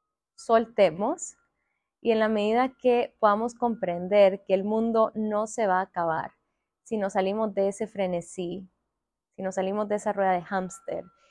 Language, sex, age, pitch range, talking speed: Spanish, female, 20-39, 190-220 Hz, 160 wpm